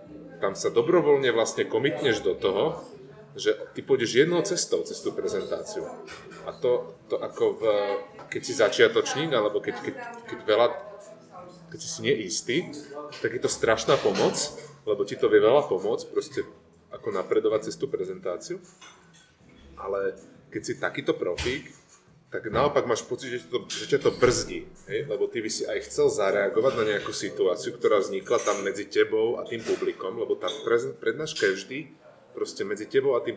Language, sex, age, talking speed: Slovak, male, 30-49, 165 wpm